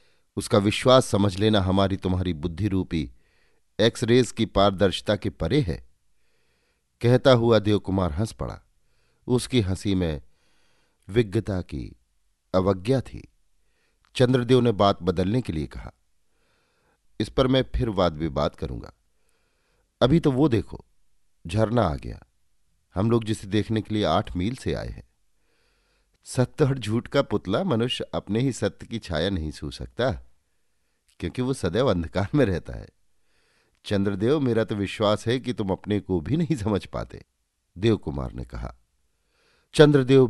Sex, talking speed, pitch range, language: male, 145 wpm, 85-120 Hz, Hindi